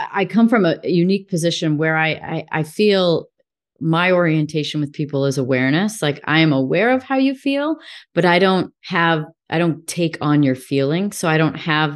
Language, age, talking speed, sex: English, 30-49, 195 wpm, female